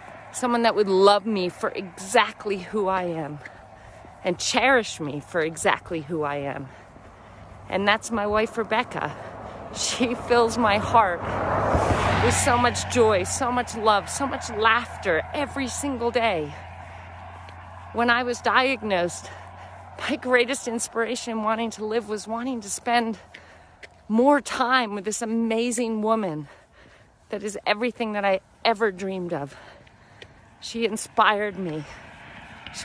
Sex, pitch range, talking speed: female, 155-225 Hz, 135 wpm